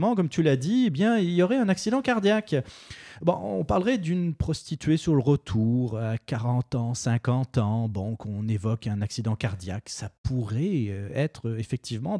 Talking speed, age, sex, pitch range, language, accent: 170 wpm, 30-49, male, 110-160 Hz, French, French